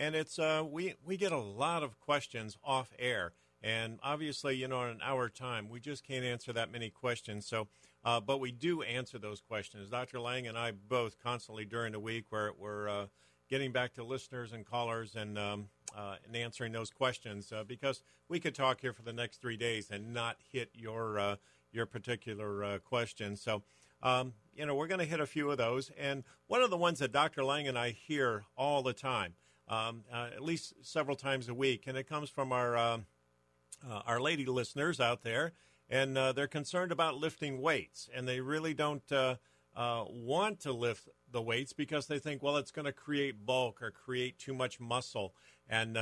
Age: 50-69